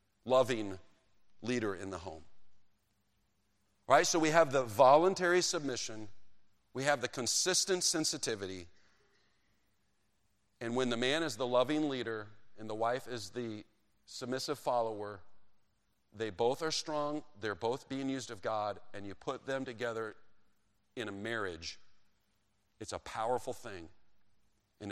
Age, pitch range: 40-59, 100-145 Hz